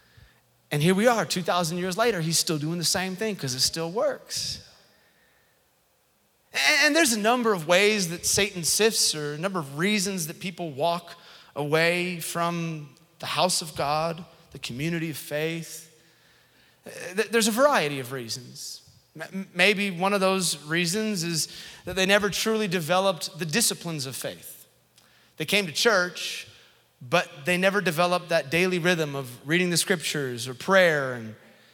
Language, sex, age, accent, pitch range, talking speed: English, male, 30-49, American, 155-190 Hz, 155 wpm